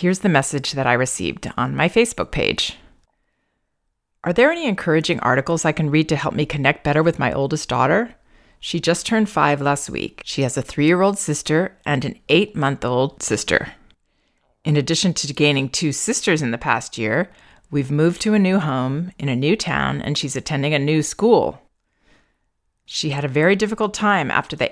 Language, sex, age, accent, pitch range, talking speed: English, female, 40-59, American, 145-195 Hz, 185 wpm